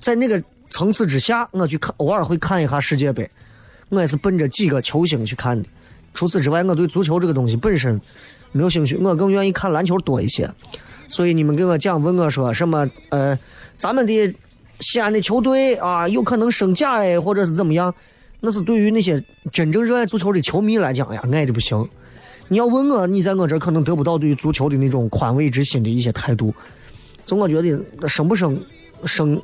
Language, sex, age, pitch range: Chinese, male, 20-39, 140-200 Hz